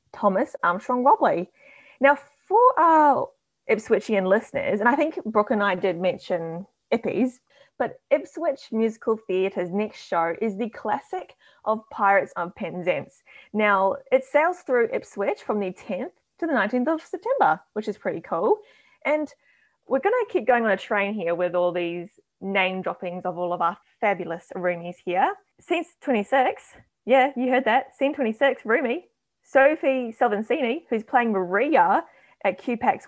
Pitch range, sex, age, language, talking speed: 195-285 Hz, female, 20-39, English, 150 wpm